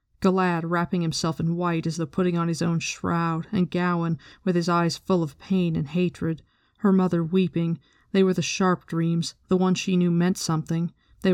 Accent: American